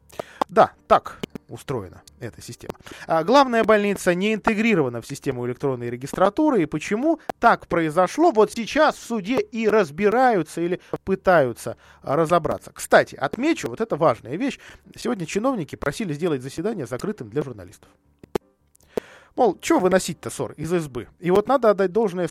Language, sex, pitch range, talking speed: Russian, male, 135-205 Hz, 140 wpm